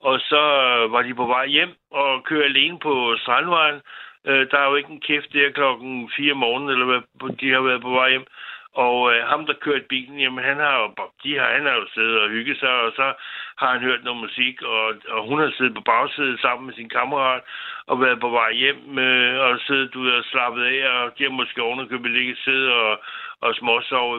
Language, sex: Danish, male